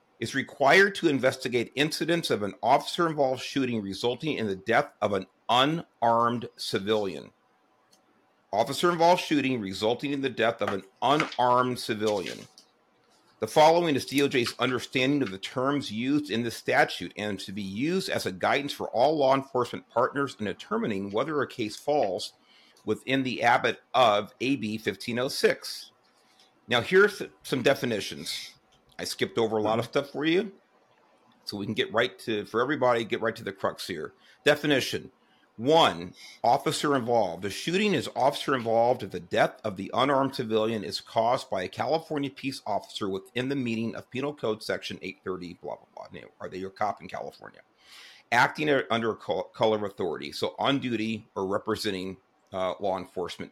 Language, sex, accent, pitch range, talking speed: English, male, American, 110-145 Hz, 160 wpm